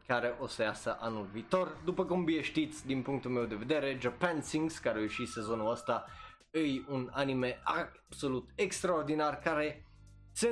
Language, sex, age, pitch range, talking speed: Romanian, male, 20-39, 115-155 Hz, 165 wpm